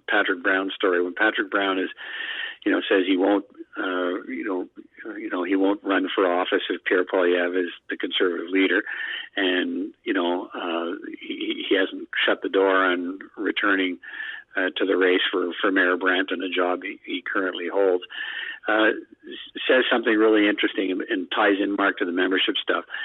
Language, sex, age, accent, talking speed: English, male, 50-69, American, 180 wpm